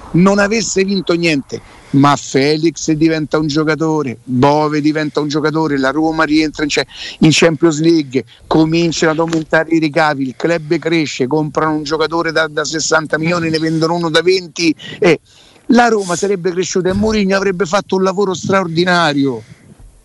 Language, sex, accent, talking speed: Italian, male, native, 155 wpm